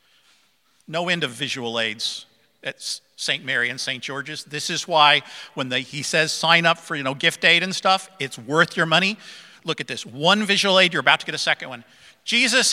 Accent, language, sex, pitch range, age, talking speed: American, English, male, 145-215 Hz, 50-69, 205 wpm